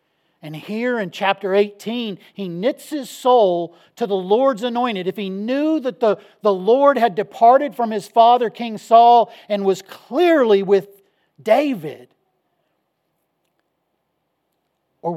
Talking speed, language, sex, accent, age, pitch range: 130 wpm, English, male, American, 50-69, 165-230 Hz